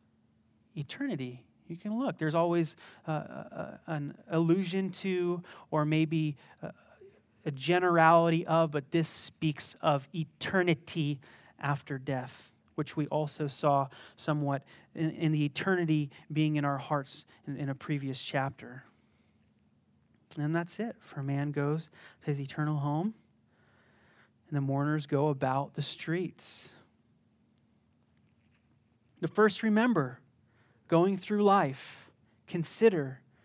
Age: 30-49